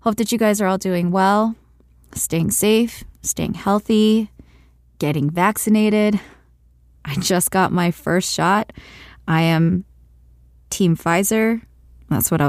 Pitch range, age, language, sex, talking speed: 155-195 Hz, 20-39, English, female, 130 wpm